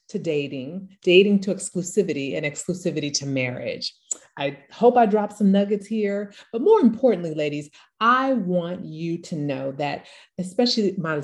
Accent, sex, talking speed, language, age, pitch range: American, female, 150 wpm, English, 30-49, 145-195 Hz